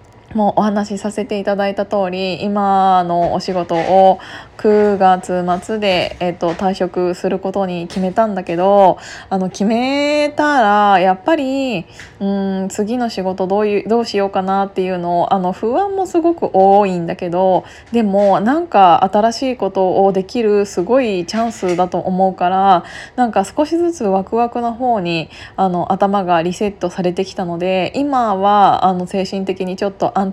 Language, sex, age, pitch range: Japanese, female, 20-39, 180-215 Hz